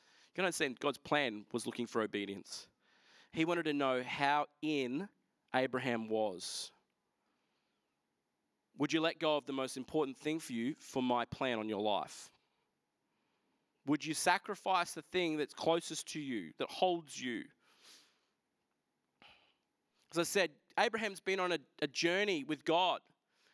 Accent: Australian